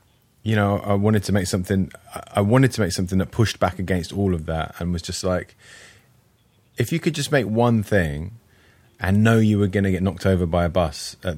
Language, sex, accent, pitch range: English, male, British, 85-105 Hz